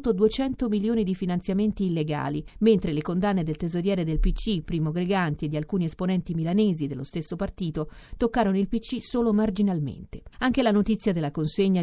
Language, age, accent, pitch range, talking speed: Italian, 40-59, native, 160-215 Hz, 160 wpm